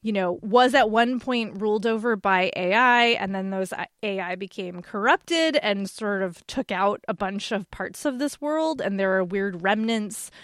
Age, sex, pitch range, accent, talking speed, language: 20-39, female, 185-230 Hz, American, 190 wpm, English